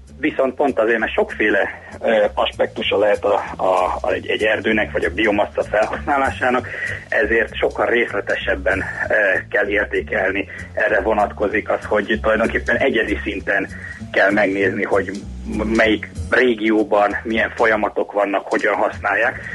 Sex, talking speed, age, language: male, 115 wpm, 30-49, Hungarian